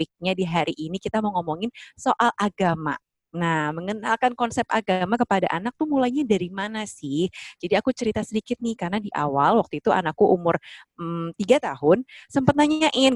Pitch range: 165-220 Hz